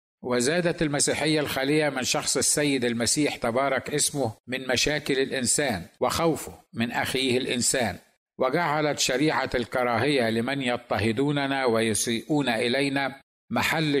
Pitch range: 120-145 Hz